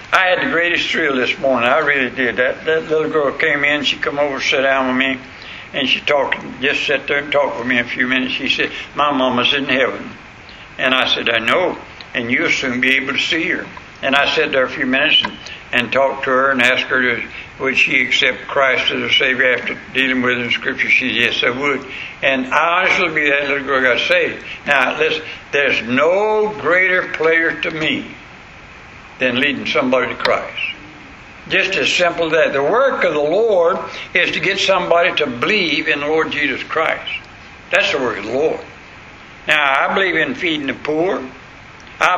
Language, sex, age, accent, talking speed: English, male, 60-79, American, 210 wpm